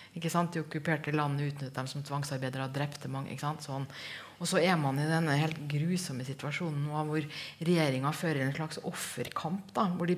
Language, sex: English, female